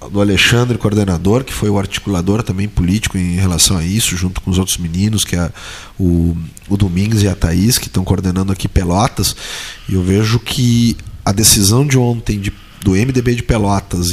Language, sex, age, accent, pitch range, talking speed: Portuguese, male, 40-59, Brazilian, 100-135 Hz, 185 wpm